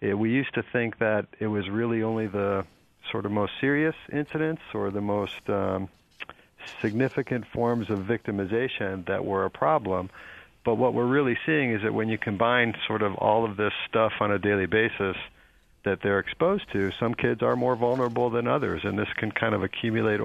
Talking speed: 190 wpm